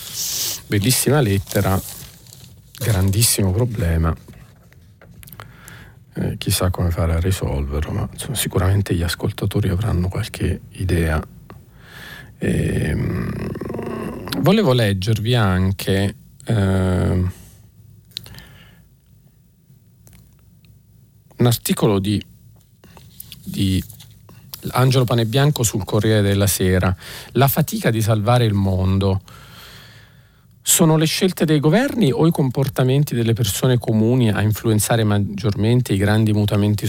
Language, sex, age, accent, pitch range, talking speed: Italian, male, 40-59, native, 100-125 Hz, 95 wpm